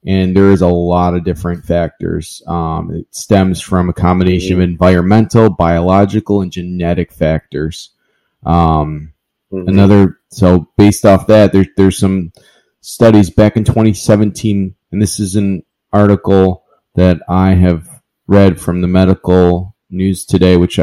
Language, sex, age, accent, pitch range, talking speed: English, male, 20-39, American, 90-105 Hz, 140 wpm